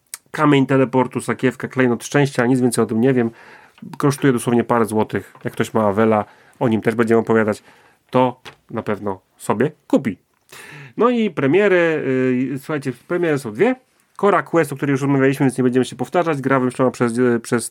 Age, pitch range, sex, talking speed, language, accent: 40-59, 120-145 Hz, male, 175 wpm, Polish, native